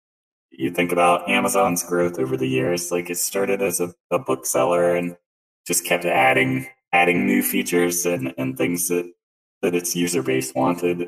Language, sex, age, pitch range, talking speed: English, male, 20-39, 65-85 Hz, 170 wpm